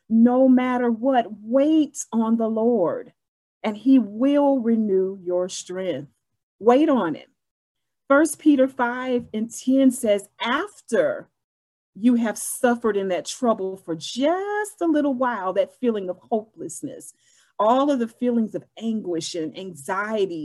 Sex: female